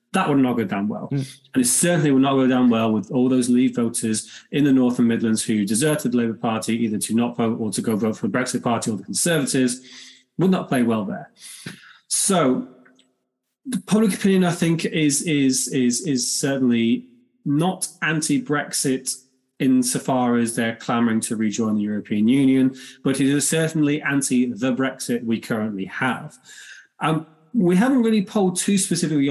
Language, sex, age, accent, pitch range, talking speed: English, male, 20-39, British, 120-155 Hz, 175 wpm